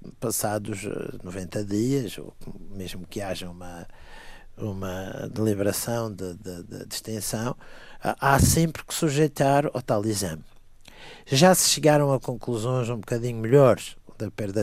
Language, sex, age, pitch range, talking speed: Portuguese, male, 50-69, 100-135 Hz, 125 wpm